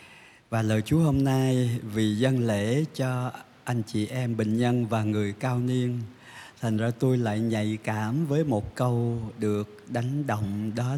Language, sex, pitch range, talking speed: Vietnamese, male, 105-125 Hz, 170 wpm